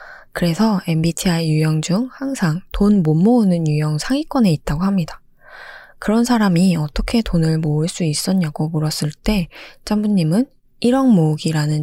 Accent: native